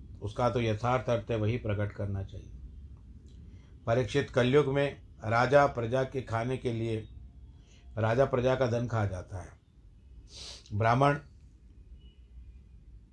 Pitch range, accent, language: 100-115 Hz, native, Hindi